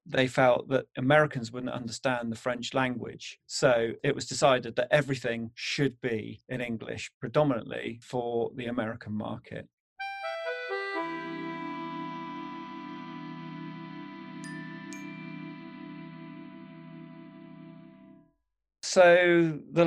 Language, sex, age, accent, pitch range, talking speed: English, male, 40-59, British, 115-150 Hz, 80 wpm